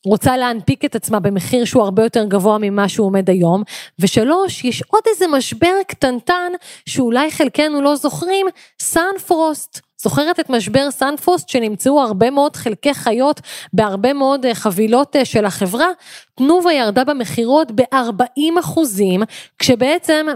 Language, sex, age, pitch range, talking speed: Hebrew, female, 20-39, 210-285 Hz, 135 wpm